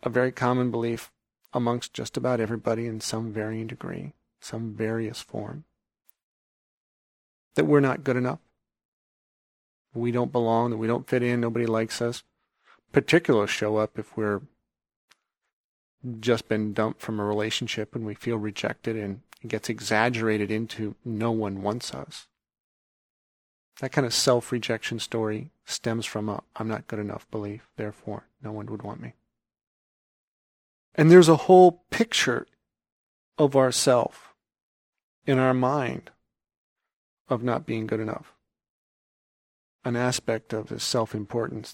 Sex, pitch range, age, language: male, 110-125 Hz, 40-59, English